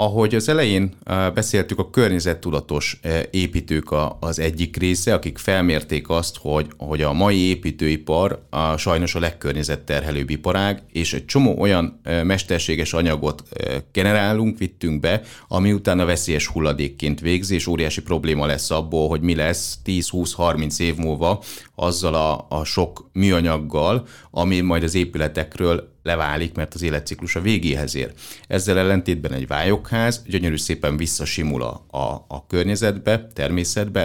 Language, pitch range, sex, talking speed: Hungarian, 75-95 Hz, male, 130 wpm